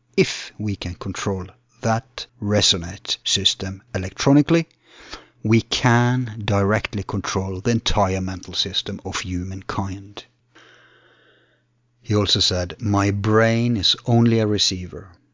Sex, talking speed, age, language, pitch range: male, 105 wpm, 50-69, English, 95-120 Hz